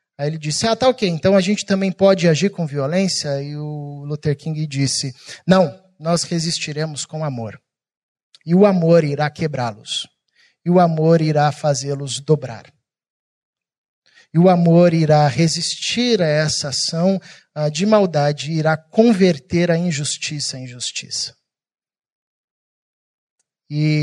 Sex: male